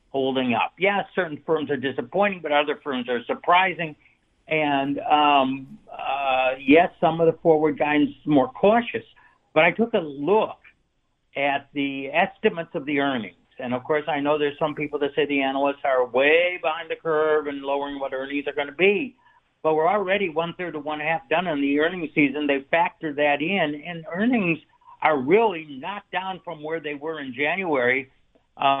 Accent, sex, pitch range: American, male, 140-170 Hz